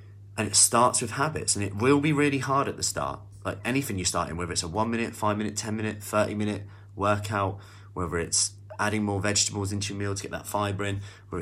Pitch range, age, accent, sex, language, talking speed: 100-110 Hz, 30-49, British, male, English, 235 wpm